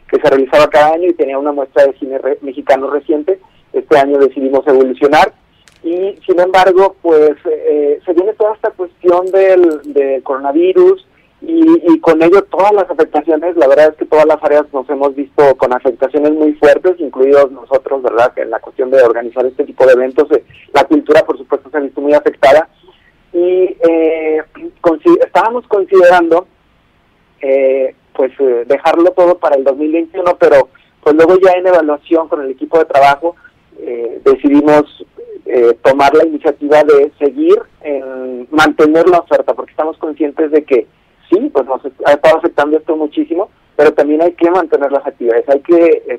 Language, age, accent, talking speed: Spanish, 40-59, Mexican, 175 wpm